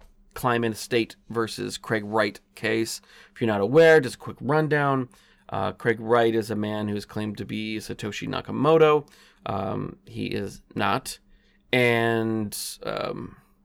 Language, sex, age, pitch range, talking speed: English, male, 30-49, 105-120 Hz, 135 wpm